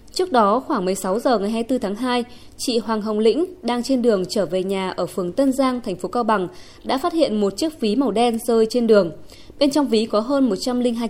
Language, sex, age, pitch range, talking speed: Vietnamese, female, 20-39, 205-270 Hz, 240 wpm